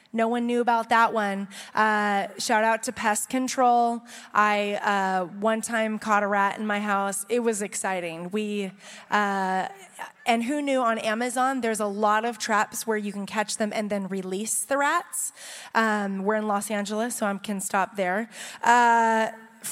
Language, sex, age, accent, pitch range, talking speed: English, female, 20-39, American, 215-275 Hz, 175 wpm